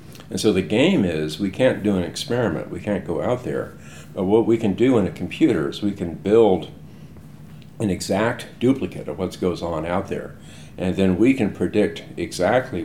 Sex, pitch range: male, 85-100 Hz